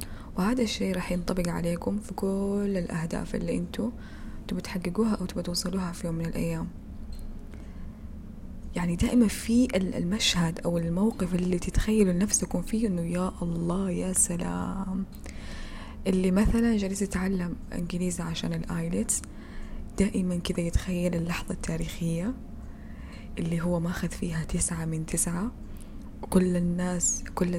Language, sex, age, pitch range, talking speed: Arabic, female, 20-39, 165-190 Hz, 115 wpm